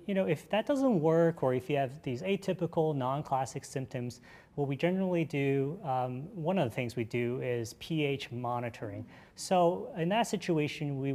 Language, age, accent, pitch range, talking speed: English, 30-49, American, 120-160 Hz, 180 wpm